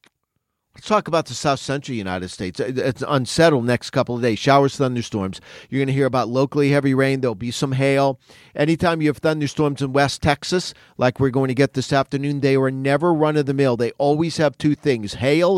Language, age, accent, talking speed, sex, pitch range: English, 40-59, American, 210 wpm, male, 120-145 Hz